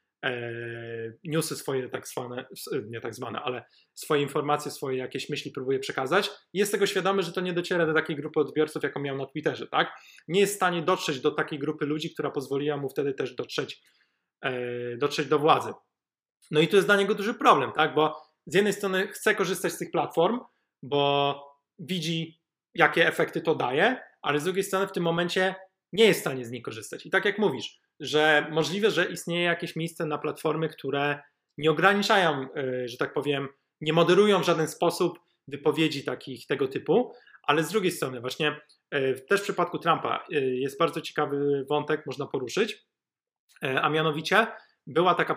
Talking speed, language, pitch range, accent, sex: 175 wpm, Polish, 140-175 Hz, native, male